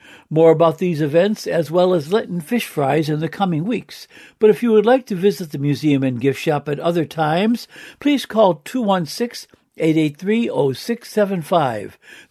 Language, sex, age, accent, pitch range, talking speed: English, male, 60-79, American, 155-210 Hz, 155 wpm